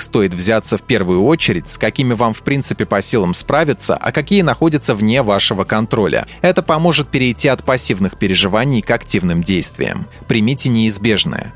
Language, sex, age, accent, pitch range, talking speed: Russian, male, 20-39, native, 105-140 Hz, 155 wpm